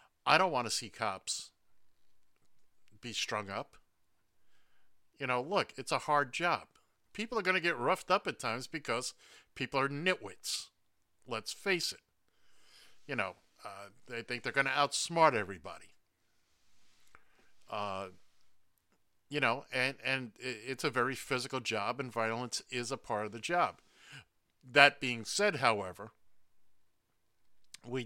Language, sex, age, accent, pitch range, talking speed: English, male, 50-69, American, 105-140 Hz, 140 wpm